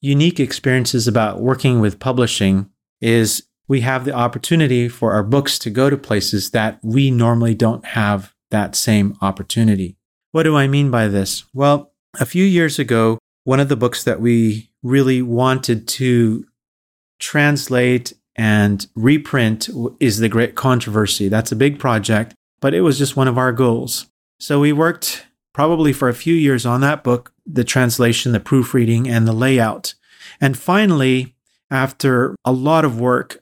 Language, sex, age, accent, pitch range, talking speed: English, male, 30-49, American, 115-140 Hz, 160 wpm